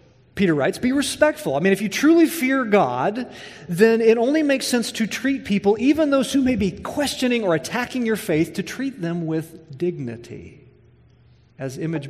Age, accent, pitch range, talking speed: 40-59, American, 175-235 Hz, 180 wpm